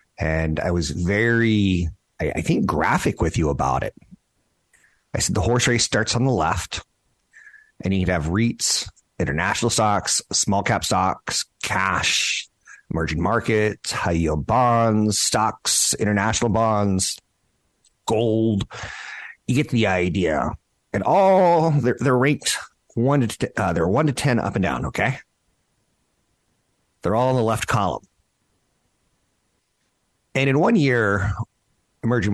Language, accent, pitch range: English, American, 85-115 Hz